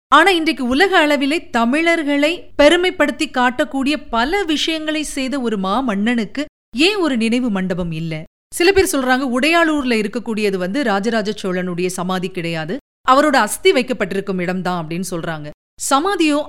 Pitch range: 210-295 Hz